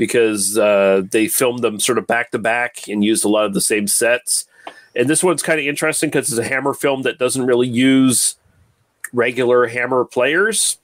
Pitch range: 110-140 Hz